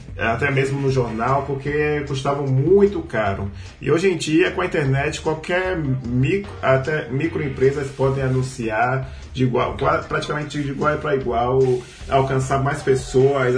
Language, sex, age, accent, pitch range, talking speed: Portuguese, male, 20-39, Brazilian, 125-145 Hz, 120 wpm